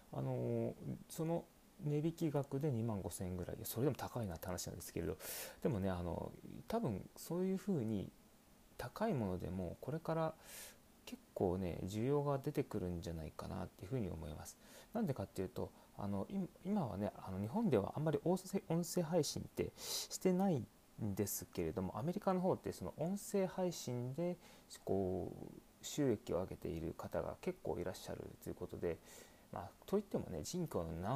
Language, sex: Japanese, male